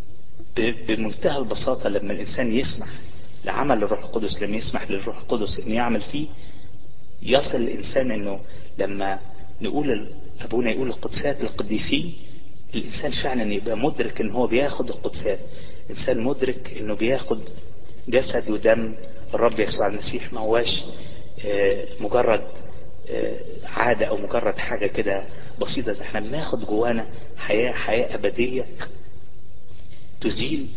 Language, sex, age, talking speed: Arabic, male, 30-49, 115 wpm